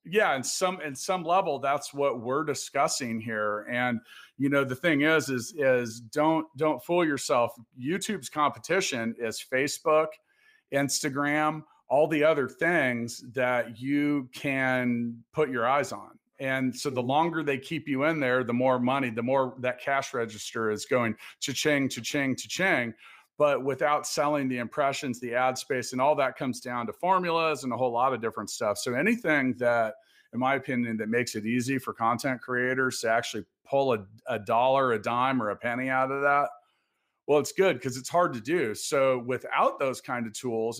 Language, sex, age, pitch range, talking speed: English, male, 40-59, 120-150 Hz, 185 wpm